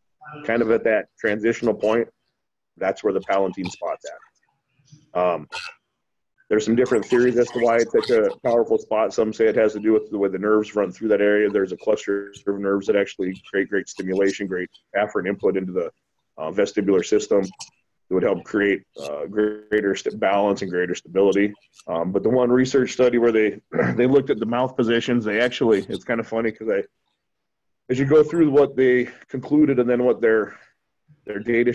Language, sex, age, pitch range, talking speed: English, male, 30-49, 105-130 Hz, 195 wpm